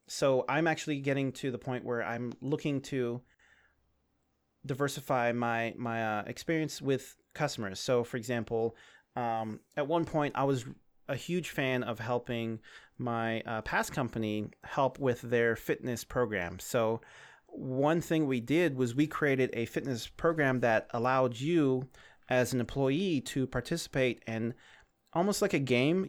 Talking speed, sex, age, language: 150 wpm, male, 30-49, English